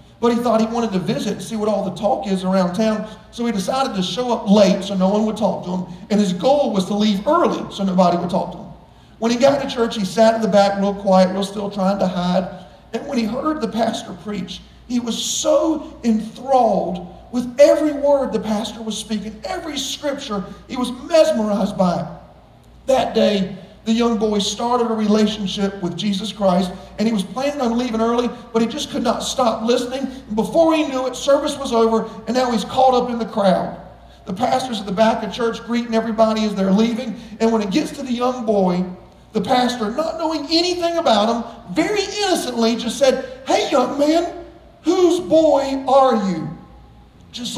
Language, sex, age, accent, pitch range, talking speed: English, male, 50-69, American, 200-260 Hz, 205 wpm